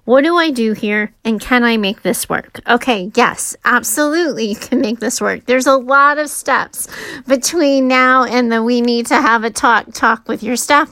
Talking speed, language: 210 wpm, English